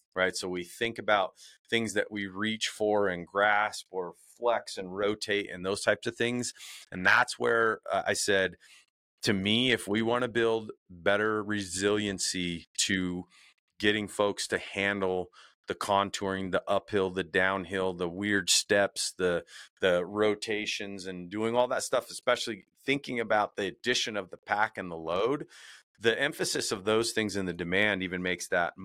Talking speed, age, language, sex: 165 wpm, 30-49, English, male